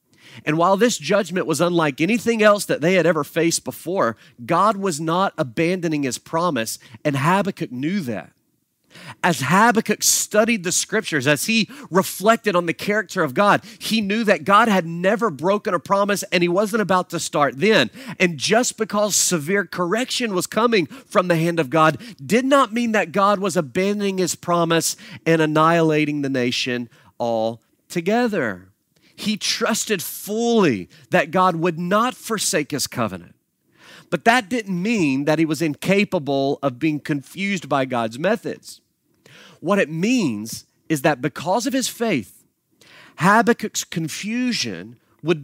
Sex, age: male, 40-59